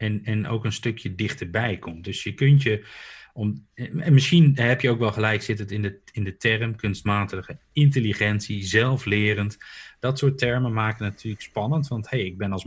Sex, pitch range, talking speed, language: male, 95-125 Hz, 200 wpm, Dutch